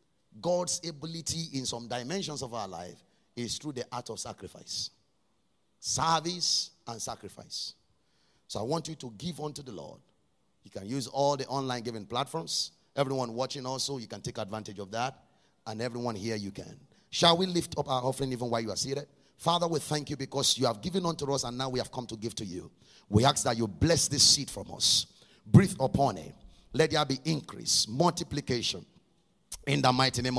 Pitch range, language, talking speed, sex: 120-175 Hz, English, 195 wpm, male